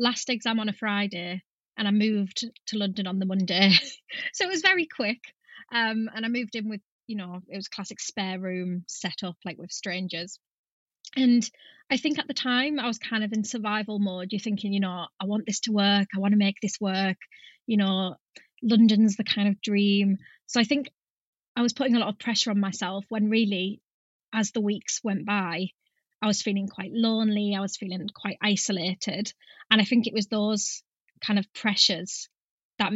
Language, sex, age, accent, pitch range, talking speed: English, female, 20-39, British, 195-235 Hz, 200 wpm